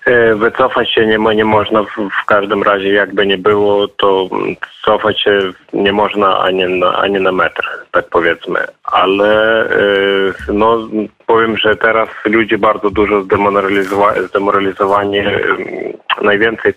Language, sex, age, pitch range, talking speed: Polish, male, 20-39, 100-120 Hz, 120 wpm